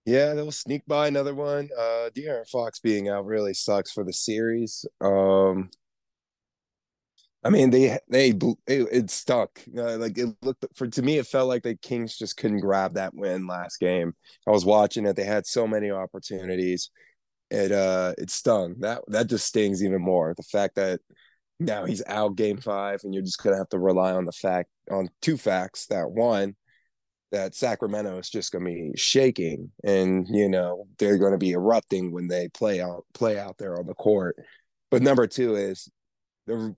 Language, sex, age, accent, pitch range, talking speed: English, male, 20-39, American, 95-115 Hz, 190 wpm